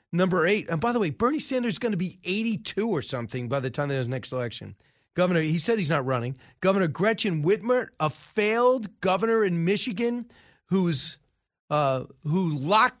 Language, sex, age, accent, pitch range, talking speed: English, male, 40-59, American, 135-185 Hz, 180 wpm